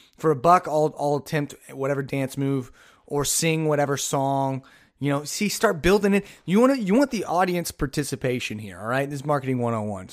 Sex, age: male, 30-49